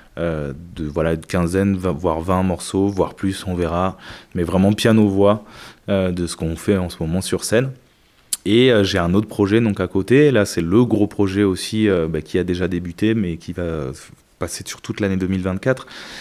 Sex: male